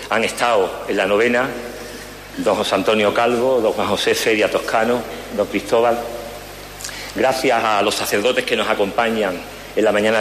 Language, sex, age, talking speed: Spanish, male, 40-59, 155 wpm